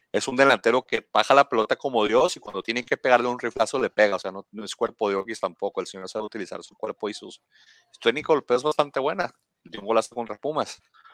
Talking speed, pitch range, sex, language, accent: 240 wpm, 110-145 Hz, male, Spanish, Mexican